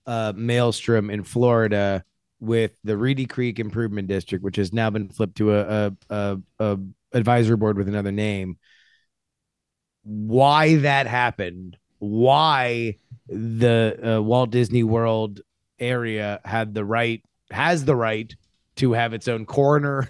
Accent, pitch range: American, 105-125 Hz